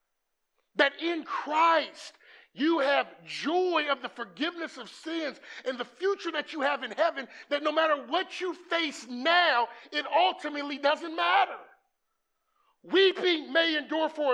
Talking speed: 140 wpm